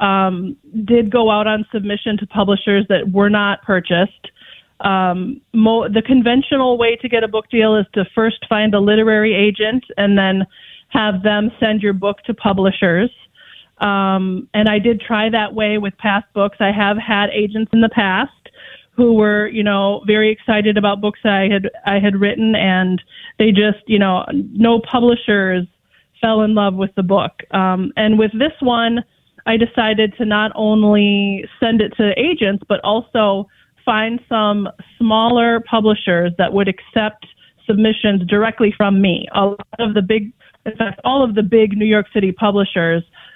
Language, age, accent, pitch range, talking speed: English, 30-49, American, 200-225 Hz, 170 wpm